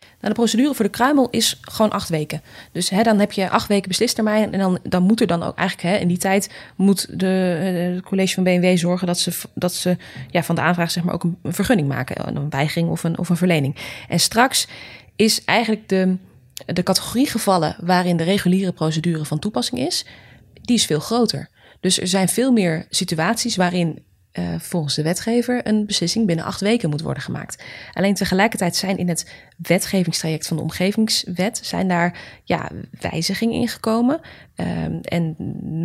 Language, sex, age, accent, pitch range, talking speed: Dutch, female, 20-39, Dutch, 170-215 Hz, 175 wpm